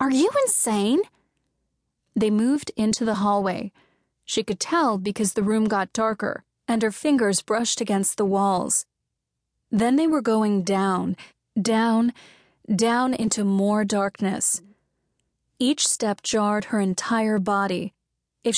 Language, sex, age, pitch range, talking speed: English, female, 30-49, 200-235 Hz, 130 wpm